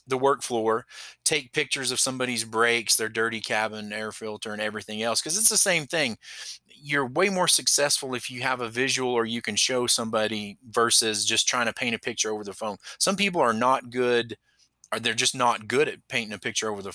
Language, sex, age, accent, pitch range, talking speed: English, male, 30-49, American, 110-135 Hz, 215 wpm